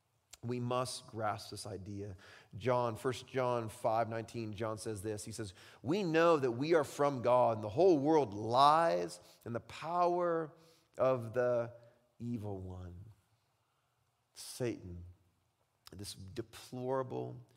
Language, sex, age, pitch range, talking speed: English, male, 30-49, 105-130 Hz, 125 wpm